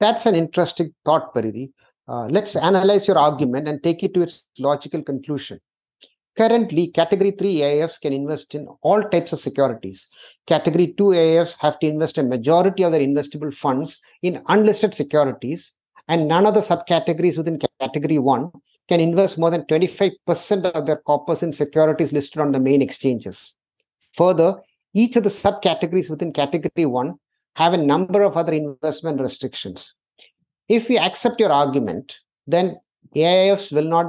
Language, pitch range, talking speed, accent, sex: English, 150-195 Hz, 155 wpm, Indian, male